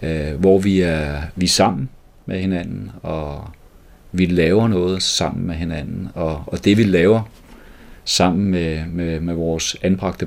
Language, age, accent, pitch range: Danish, 40-59, native, 80-95 Hz